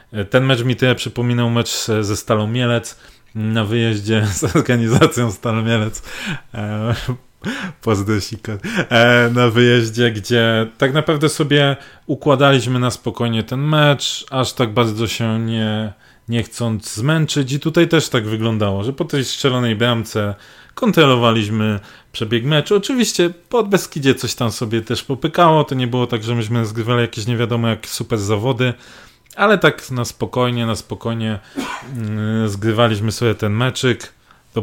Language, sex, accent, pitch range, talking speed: Polish, male, native, 110-125 Hz, 135 wpm